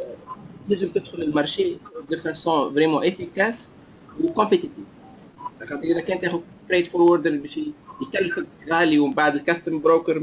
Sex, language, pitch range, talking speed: male, English, 155-225 Hz, 90 wpm